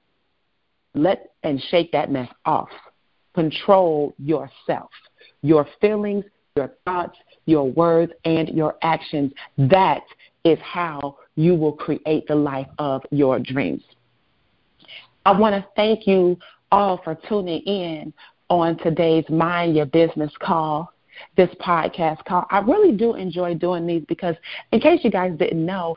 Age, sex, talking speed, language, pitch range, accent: 40-59, female, 135 wpm, English, 155-210 Hz, American